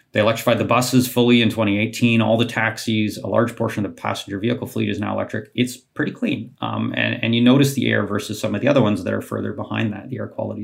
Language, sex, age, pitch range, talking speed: English, male, 30-49, 110-125 Hz, 255 wpm